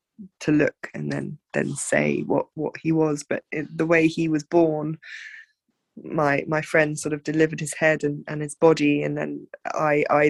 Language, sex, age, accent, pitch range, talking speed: English, female, 20-39, British, 150-190 Hz, 185 wpm